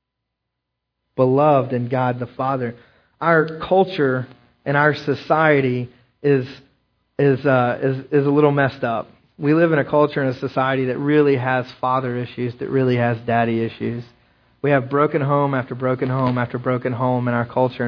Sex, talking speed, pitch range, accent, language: male, 170 wpm, 130-160 Hz, American, English